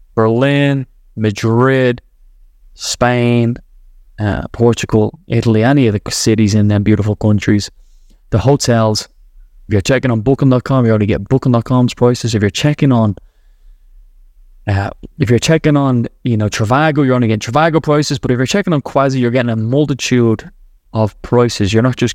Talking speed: 155 wpm